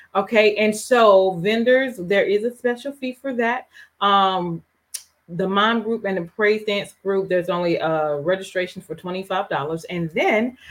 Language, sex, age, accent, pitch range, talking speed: English, female, 30-49, American, 170-210 Hz, 155 wpm